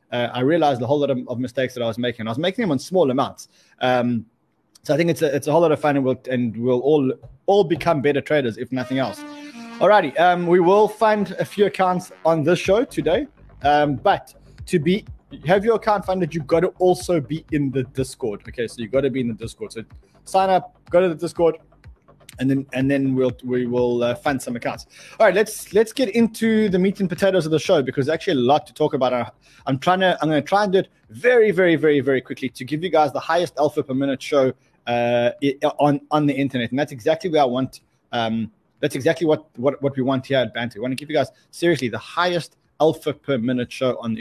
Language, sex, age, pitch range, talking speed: English, male, 20-39, 125-175 Hz, 250 wpm